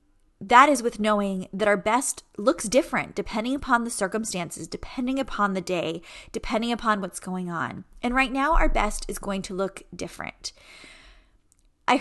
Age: 20-39